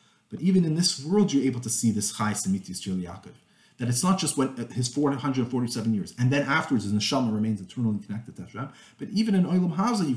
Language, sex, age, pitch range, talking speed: English, male, 30-49, 115-160 Hz, 210 wpm